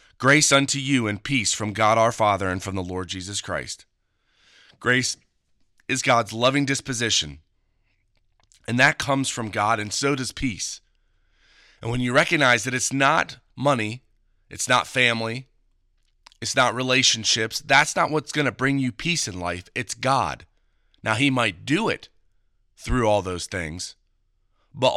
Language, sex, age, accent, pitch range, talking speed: English, male, 30-49, American, 105-135 Hz, 155 wpm